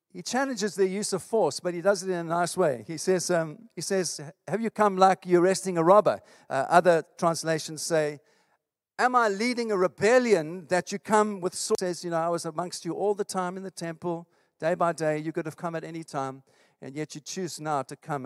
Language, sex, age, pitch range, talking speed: English, male, 50-69, 145-180 Hz, 235 wpm